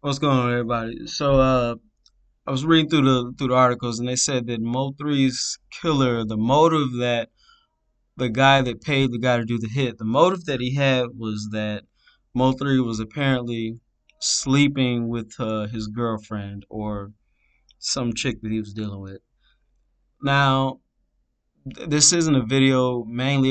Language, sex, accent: English, male, American